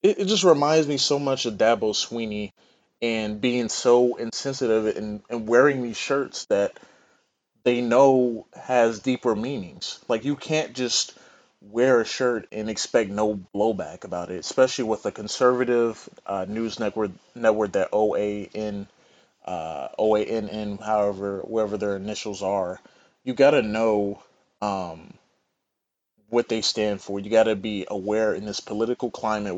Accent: American